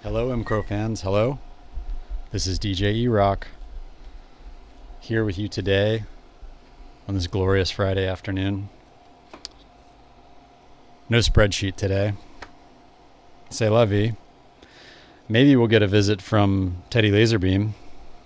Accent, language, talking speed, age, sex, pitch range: American, English, 100 wpm, 40-59, male, 95-115 Hz